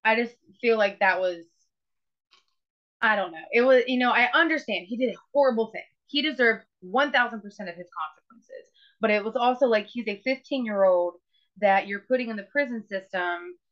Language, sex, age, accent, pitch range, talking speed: English, female, 20-39, American, 195-270 Hz, 190 wpm